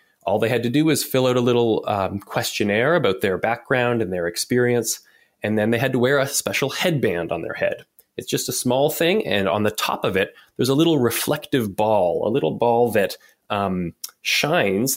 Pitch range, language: 105-145 Hz, English